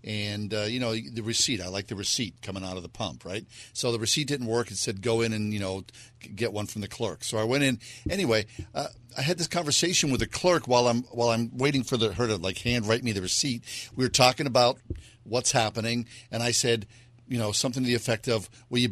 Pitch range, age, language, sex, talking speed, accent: 115-135 Hz, 50-69, English, male, 250 wpm, American